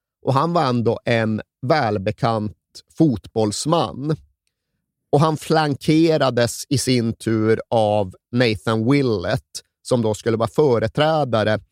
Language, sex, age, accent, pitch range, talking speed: Swedish, male, 30-49, native, 110-140 Hz, 110 wpm